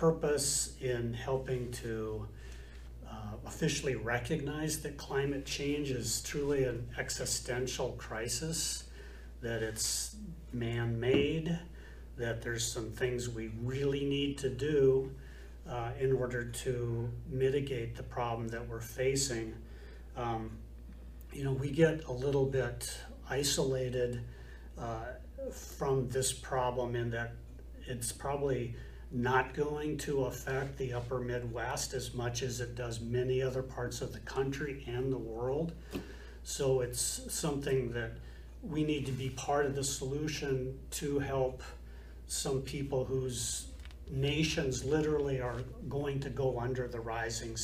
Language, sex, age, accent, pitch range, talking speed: English, male, 40-59, American, 115-135 Hz, 125 wpm